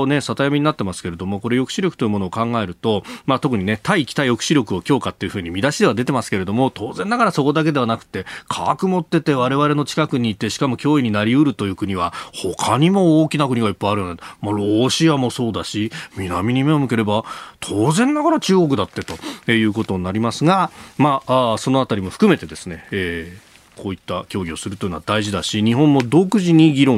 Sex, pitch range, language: male, 100-140 Hz, Japanese